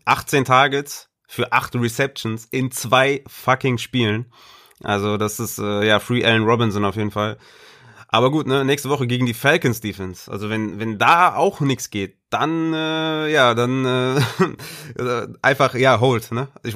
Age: 20-39